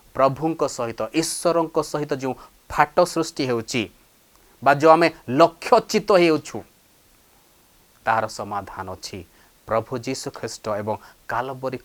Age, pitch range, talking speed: 30-49, 115-165 Hz, 110 wpm